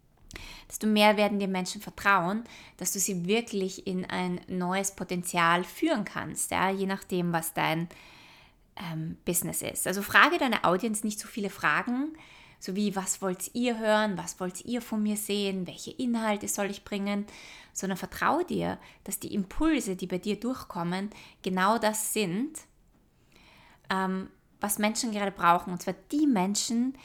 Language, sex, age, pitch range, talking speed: German, female, 20-39, 180-215 Hz, 155 wpm